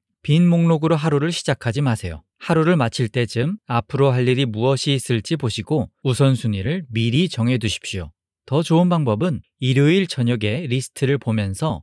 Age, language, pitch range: 40-59, Korean, 110-150 Hz